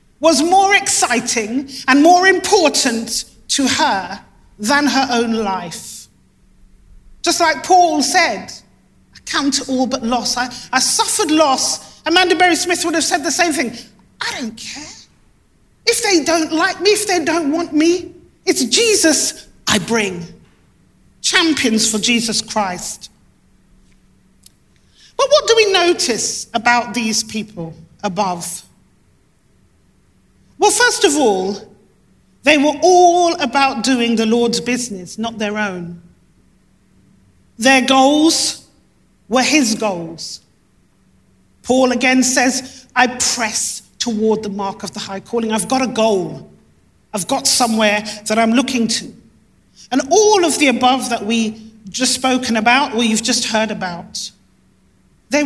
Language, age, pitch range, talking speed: English, 40-59, 220-315 Hz, 135 wpm